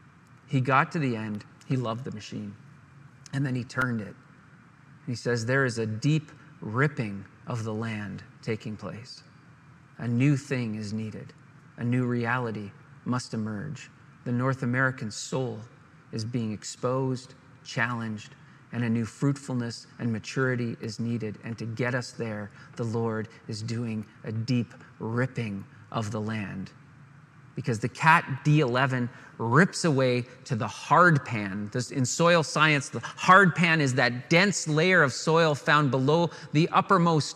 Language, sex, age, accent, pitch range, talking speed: English, male, 40-59, American, 120-155 Hz, 150 wpm